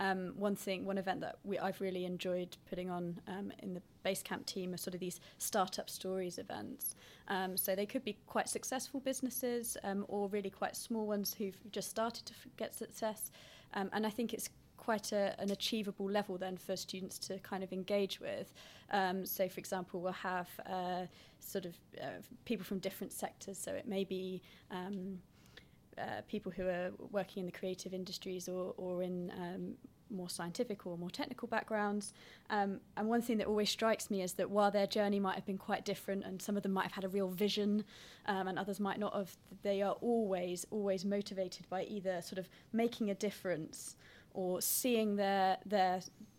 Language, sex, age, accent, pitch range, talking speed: English, female, 20-39, British, 185-210 Hz, 195 wpm